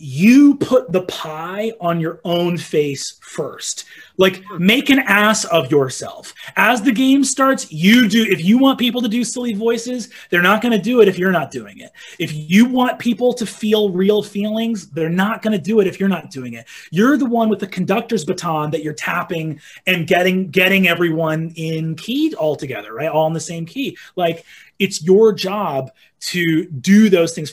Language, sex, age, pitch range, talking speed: English, male, 30-49, 170-230 Hz, 190 wpm